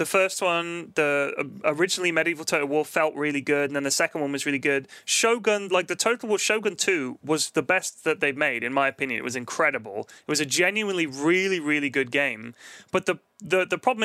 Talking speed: 220 wpm